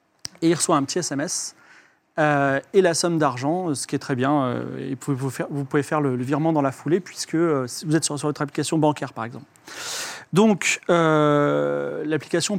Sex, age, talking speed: male, 30-49, 205 wpm